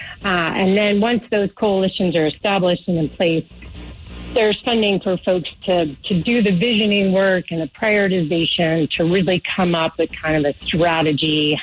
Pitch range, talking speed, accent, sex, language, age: 155-185 Hz, 170 wpm, American, female, English, 40-59